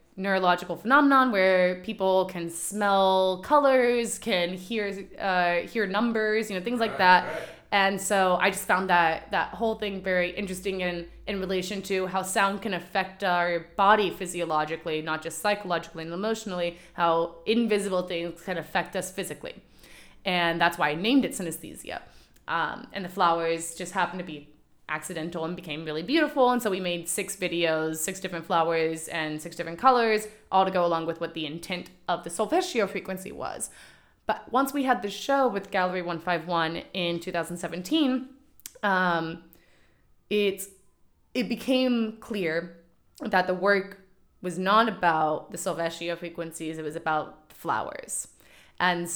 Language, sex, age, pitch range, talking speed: English, female, 20-39, 170-210 Hz, 155 wpm